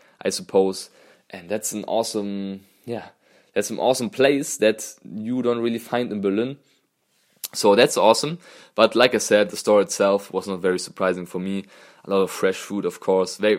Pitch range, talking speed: 100-120 Hz, 185 wpm